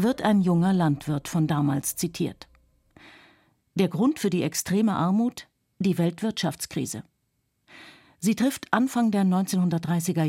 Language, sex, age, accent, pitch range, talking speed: German, female, 50-69, German, 160-205 Hz, 115 wpm